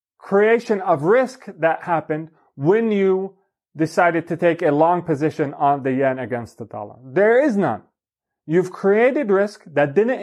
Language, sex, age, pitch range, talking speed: English, male, 30-49, 145-200 Hz, 160 wpm